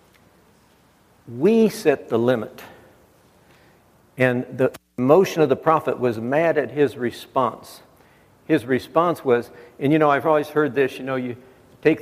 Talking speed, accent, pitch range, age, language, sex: 145 wpm, American, 130-145 Hz, 60-79, English, male